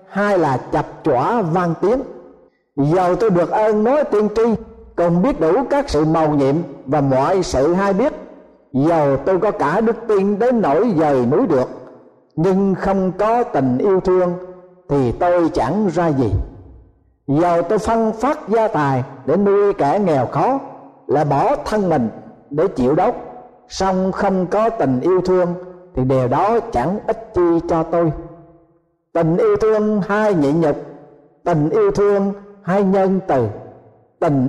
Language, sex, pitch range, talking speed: Vietnamese, male, 150-215 Hz, 160 wpm